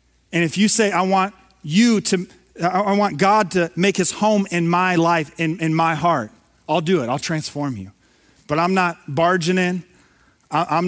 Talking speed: 190 wpm